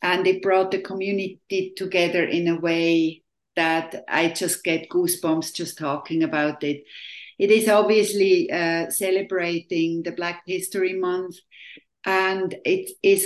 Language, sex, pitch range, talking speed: English, female, 170-195 Hz, 135 wpm